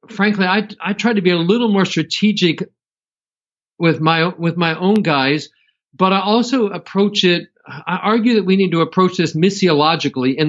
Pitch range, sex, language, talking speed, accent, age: 145-185 Hz, male, English, 175 wpm, American, 50-69